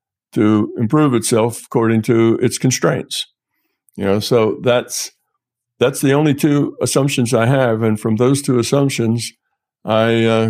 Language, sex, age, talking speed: English, male, 60-79, 145 wpm